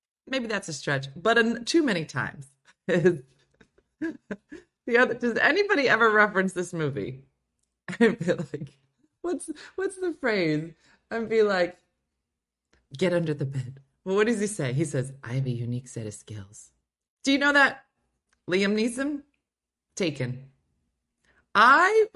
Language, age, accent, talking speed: English, 30-49, American, 140 wpm